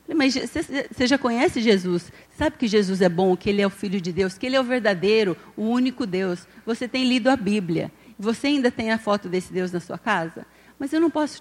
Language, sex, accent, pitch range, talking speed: Portuguese, female, Brazilian, 195-240 Hz, 230 wpm